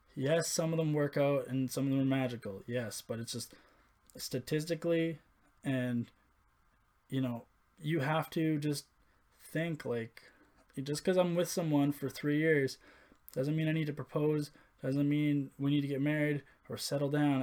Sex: male